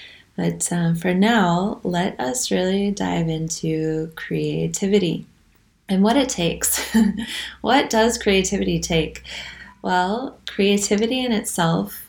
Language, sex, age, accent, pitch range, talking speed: English, female, 20-39, American, 165-195 Hz, 110 wpm